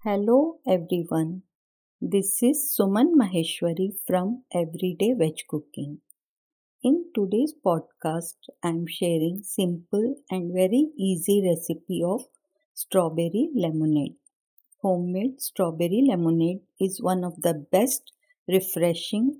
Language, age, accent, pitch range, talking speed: Hindi, 50-69, native, 165-230 Hz, 100 wpm